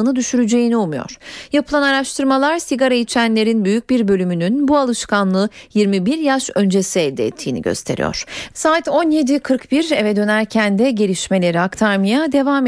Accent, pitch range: native, 225-280 Hz